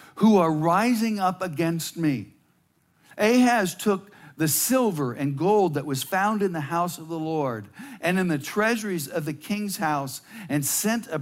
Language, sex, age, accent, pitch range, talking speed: English, male, 60-79, American, 140-185 Hz, 170 wpm